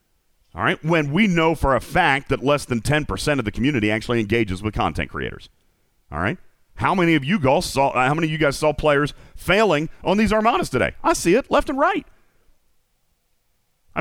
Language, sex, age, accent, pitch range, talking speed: English, male, 40-59, American, 125-180 Hz, 200 wpm